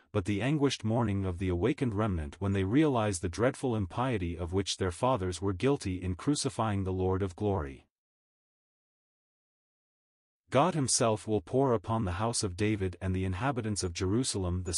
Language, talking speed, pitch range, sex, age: English, 165 wpm, 90-120 Hz, male, 40-59